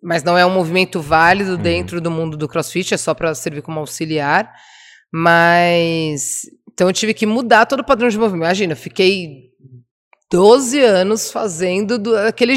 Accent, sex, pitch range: Brazilian, female, 165-210 Hz